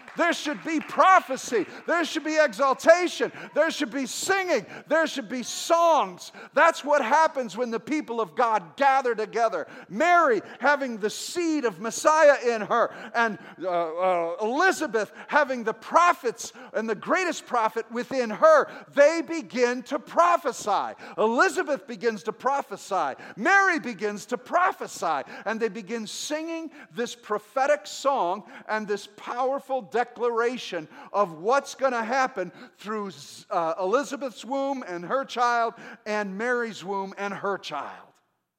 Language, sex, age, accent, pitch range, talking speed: English, male, 50-69, American, 210-285 Hz, 135 wpm